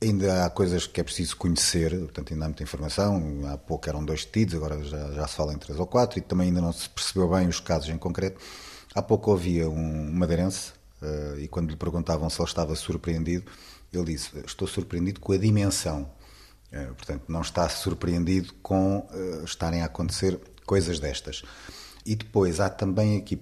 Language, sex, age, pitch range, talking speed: Portuguese, male, 30-49, 80-105 Hz, 195 wpm